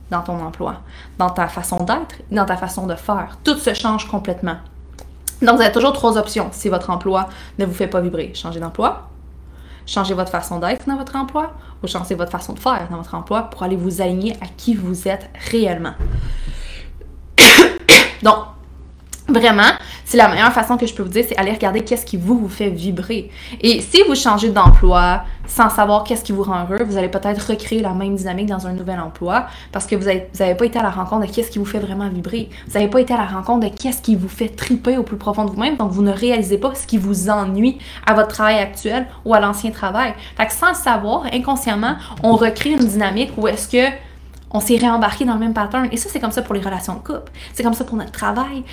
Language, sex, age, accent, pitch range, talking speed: English, female, 20-39, Canadian, 190-240 Hz, 230 wpm